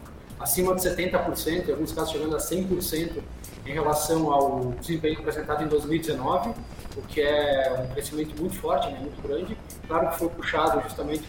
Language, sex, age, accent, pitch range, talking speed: Portuguese, male, 20-39, Brazilian, 145-180 Hz, 165 wpm